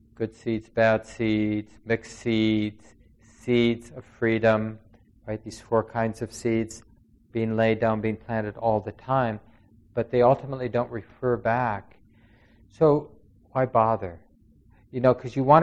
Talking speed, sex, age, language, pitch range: 140 wpm, male, 50-69, English, 110-140 Hz